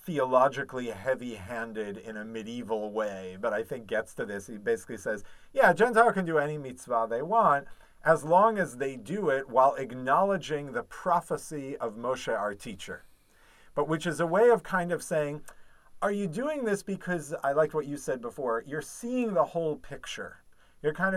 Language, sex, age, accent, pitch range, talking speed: English, male, 50-69, American, 115-175 Hz, 180 wpm